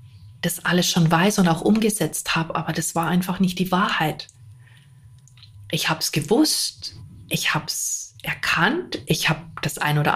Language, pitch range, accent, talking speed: German, 155-200 Hz, German, 165 wpm